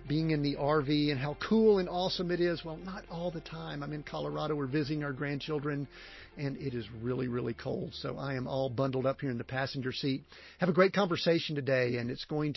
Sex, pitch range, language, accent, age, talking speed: male, 135-170 Hz, English, American, 50-69, 230 wpm